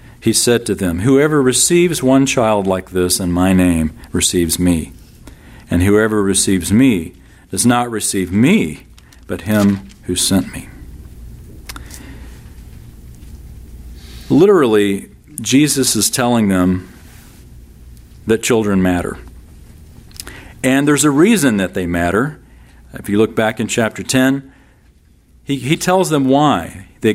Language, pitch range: English, 90-130 Hz